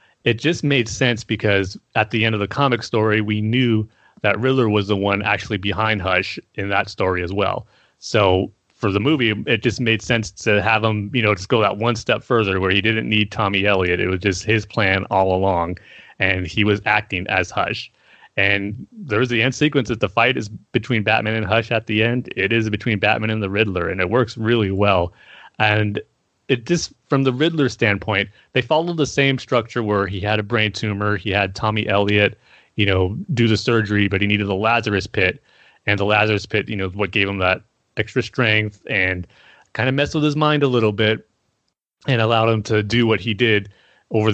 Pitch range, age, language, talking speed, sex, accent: 100-120 Hz, 30-49, English, 210 wpm, male, American